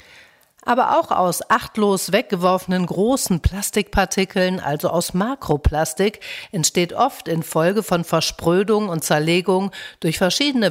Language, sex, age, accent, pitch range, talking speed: German, female, 60-79, German, 160-200 Hz, 105 wpm